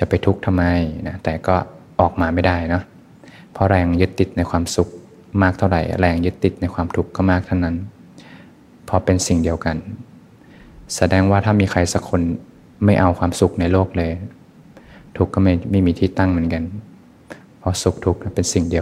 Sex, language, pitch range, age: male, Thai, 85-95 Hz, 20-39